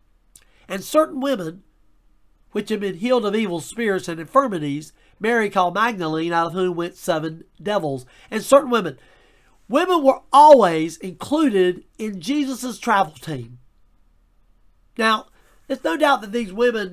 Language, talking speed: English, 140 wpm